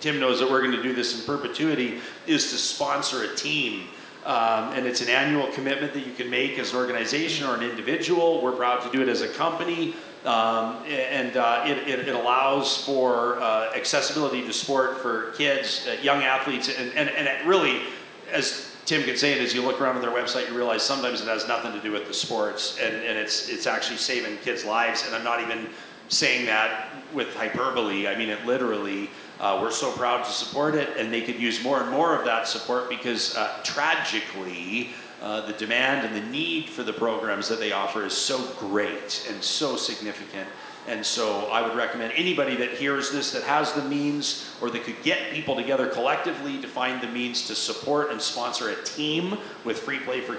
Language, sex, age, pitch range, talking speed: English, male, 40-59, 115-140 Hz, 210 wpm